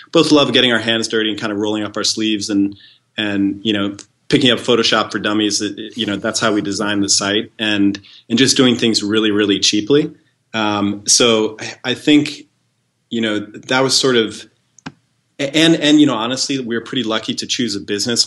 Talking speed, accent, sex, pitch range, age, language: 205 wpm, American, male, 100-115 Hz, 30-49, English